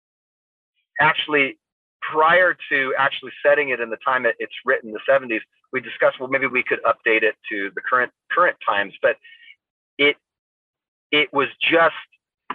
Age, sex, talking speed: 40-59, male, 155 wpm